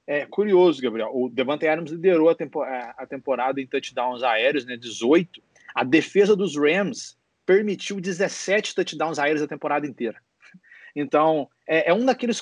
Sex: male